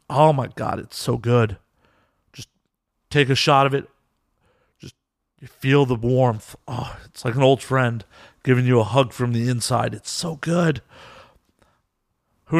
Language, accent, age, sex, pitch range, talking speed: English, American, 40-59, male, 125-170 Hz, 160 wpm